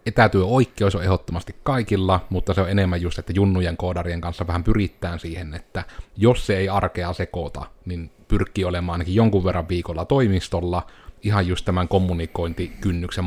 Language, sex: Finnish, male